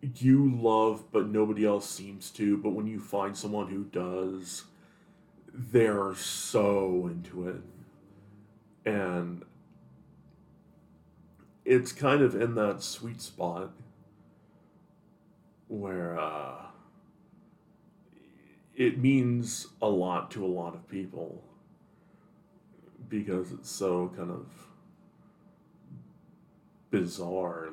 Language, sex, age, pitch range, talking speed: English, male, 40-59, 95-130 Hz, 95 wpm